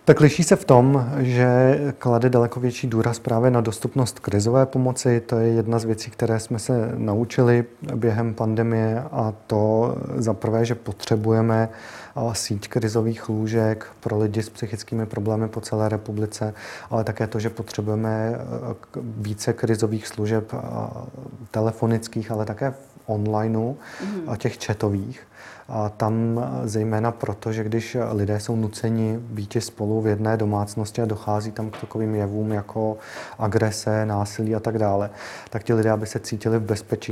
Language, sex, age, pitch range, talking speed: Czech, male, 30-49, 110-120 Hz, 145 wpm